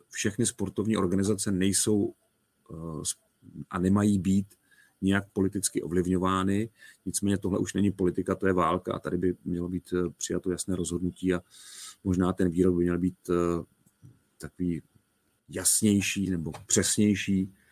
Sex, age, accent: male, 40-59, native